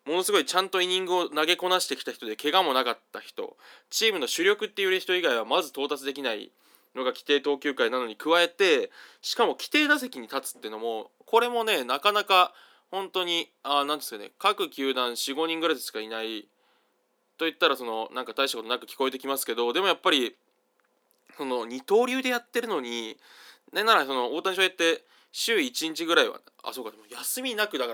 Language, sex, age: Japanese, male, 20-39